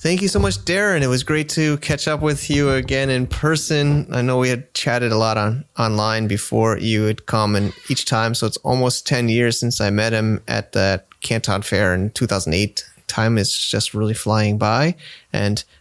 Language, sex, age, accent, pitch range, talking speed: English, male, 30-49, American, 110-135 Hz, 205 wpm